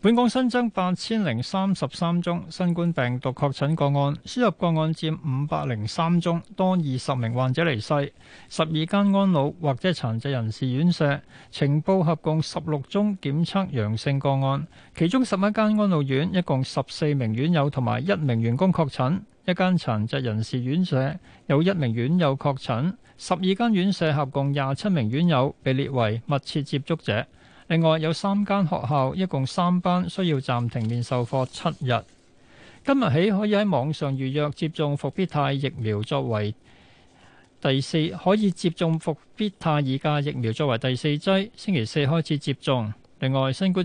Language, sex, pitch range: Chinese, male, 130-180 Hz